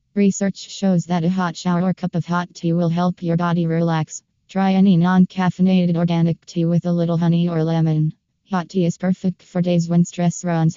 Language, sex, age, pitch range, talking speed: English, female, 20-39, 165-180 Hz, 200 wpm